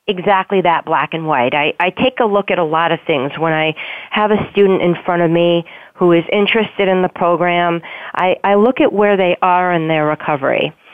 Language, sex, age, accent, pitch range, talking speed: English, female, 40-59, American, 165-200 Hz, 220 wpm